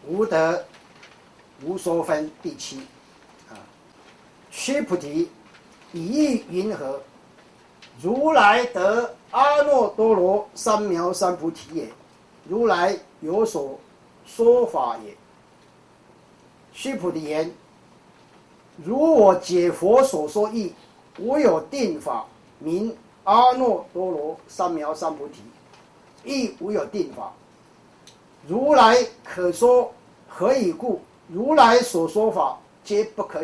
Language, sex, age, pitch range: Chinese, male, 50-69, 180-275 Hz